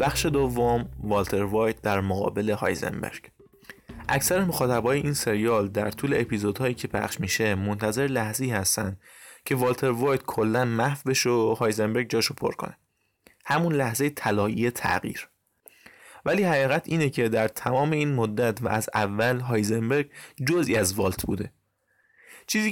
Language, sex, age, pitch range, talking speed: Persian, male, 20-39, 105-135 Hz, 135 wpm